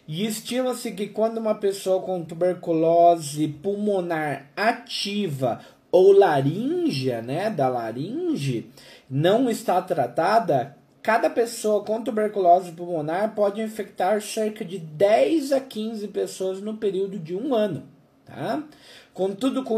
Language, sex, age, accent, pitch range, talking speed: Portuguese, male, 20-39, Brazilian, 145-210 Hz, 120 wpm